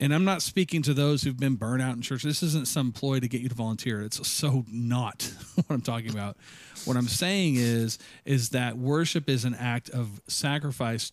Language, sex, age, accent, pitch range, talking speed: English, male, 40-59, American, 120-145 Hz, 215 wpm